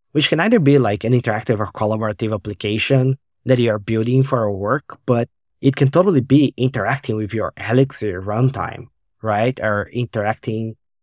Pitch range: 105-125 Hz